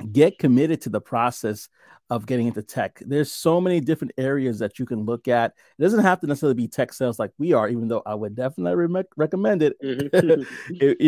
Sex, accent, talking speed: male, American, 205 wpm